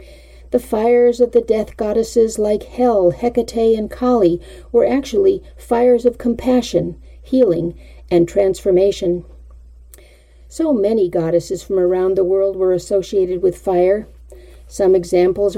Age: 50-69